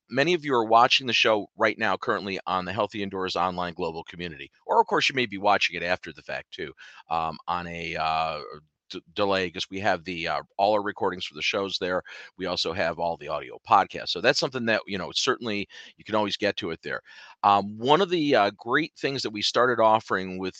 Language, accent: English, American